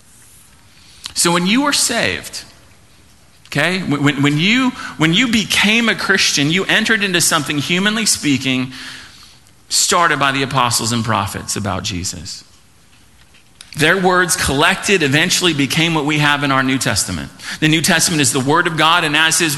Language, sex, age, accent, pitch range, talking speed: English, male, 40-59, American, 125-170 Hz, 150 wpm